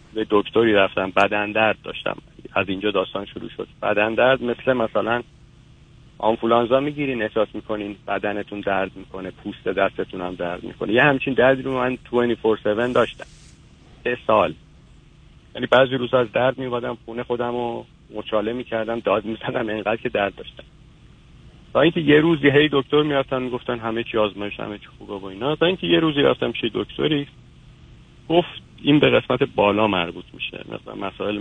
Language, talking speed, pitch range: Persian, 160 wpm, 100-140 Hz